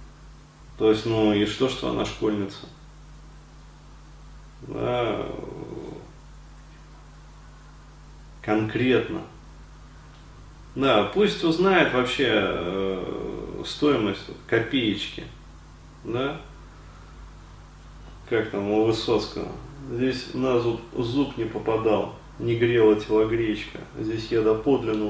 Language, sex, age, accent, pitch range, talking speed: Russian, male, 30-49, native, 100-120 Hz, 85 wpm